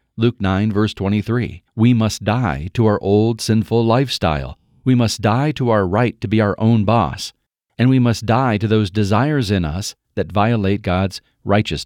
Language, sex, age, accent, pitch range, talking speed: English, male, 40-59, American, 95-120 Hz, 180 wpm